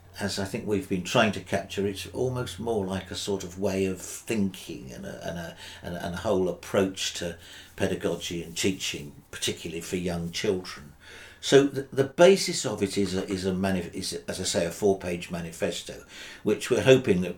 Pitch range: 85-105 Hz